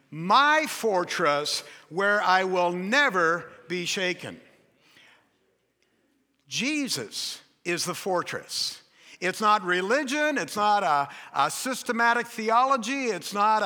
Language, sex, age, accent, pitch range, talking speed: English, male, 60-79, American, 185-250 Hz, 100 wpm